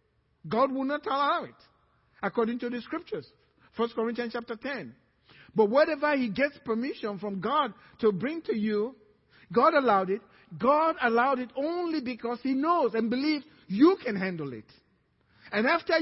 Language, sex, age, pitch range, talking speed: English, male, 50-69, 205-285 Hz, 155 wpm